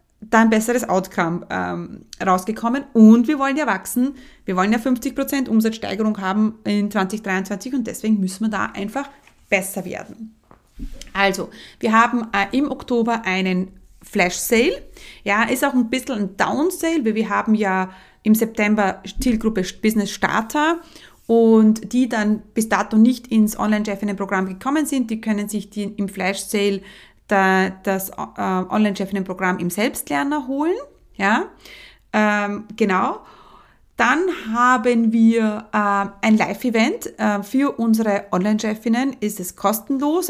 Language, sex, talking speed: German, female, 130 wpm